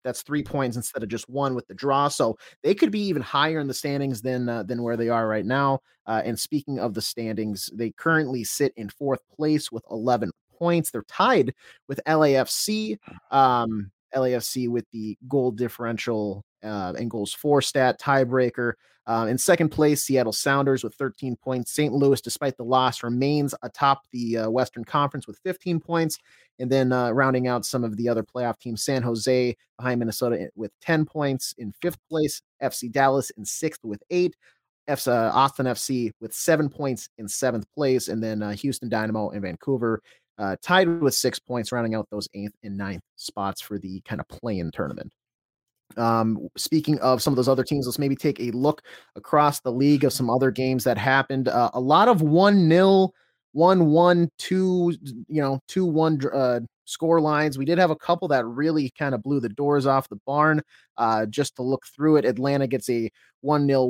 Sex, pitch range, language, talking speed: male, 115-145 Hz, English, 195 wpm